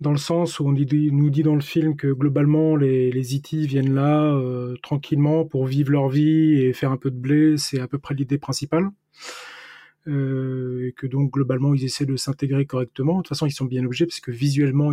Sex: male